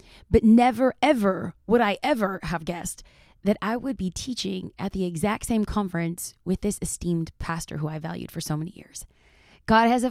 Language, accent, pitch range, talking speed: English, American, 175-220 Hz, 190 wpm